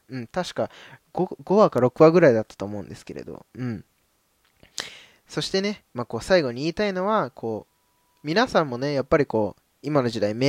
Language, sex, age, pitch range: Japanese, male, 20-39, 120-190 Hz